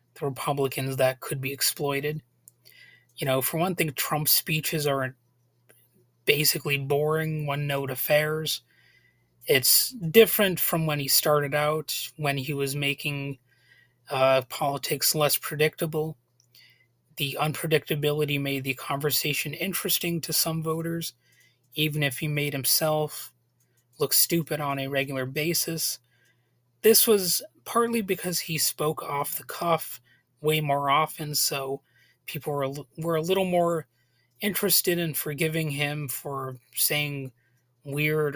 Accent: American